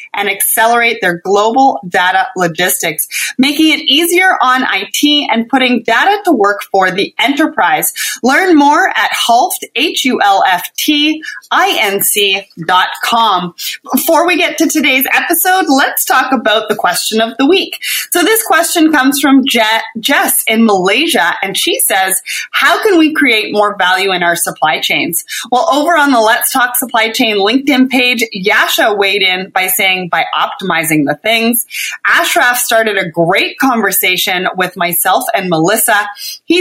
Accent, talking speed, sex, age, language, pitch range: American, 150 wpm, female, 30-49, English, 195-290 Hz